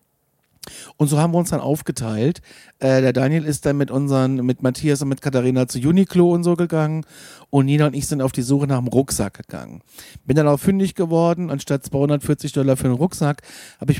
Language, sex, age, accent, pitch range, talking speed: German, male, 40-59, German, 130-170 Hz, 210 wpm